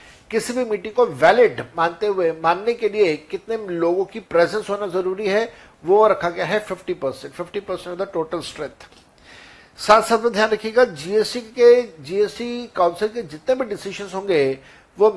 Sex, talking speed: male, 155 wpm